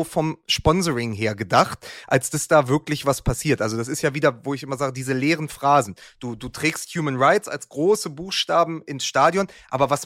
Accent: German